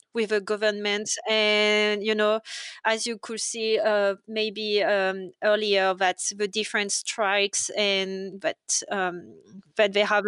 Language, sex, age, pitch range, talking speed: English, female, 20-39, 205-235 Hz, 140 wpm